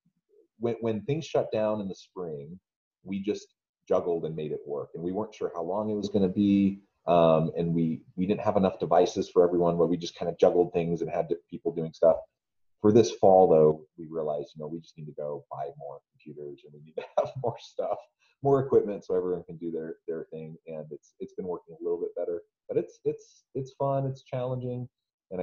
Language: English